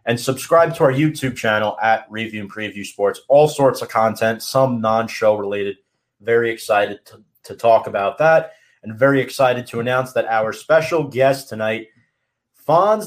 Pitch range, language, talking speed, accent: 105-135 Hz, English, 165 wpm, American